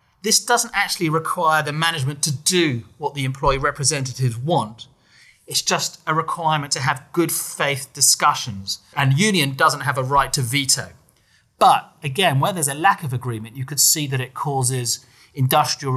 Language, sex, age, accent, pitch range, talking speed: English, male, 30-49, British, 130-155 Hz, 170 wpm